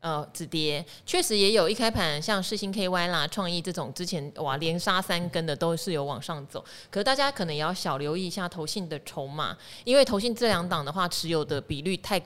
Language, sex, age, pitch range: Chinese, female, 20-39, 155-205 Hz